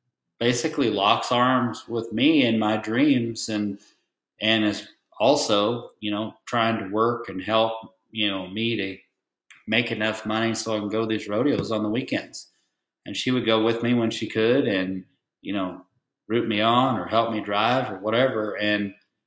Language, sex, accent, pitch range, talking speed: English, male, American, 100-115 Hz, 180 wpm